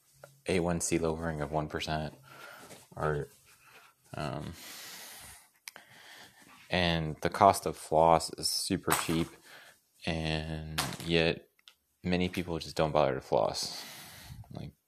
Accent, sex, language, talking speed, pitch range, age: American, male, English, 95 wpm, 75-85 Hz, 20-39